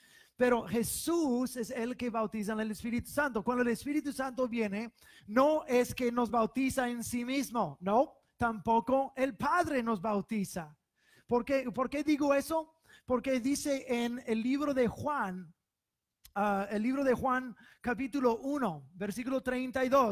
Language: English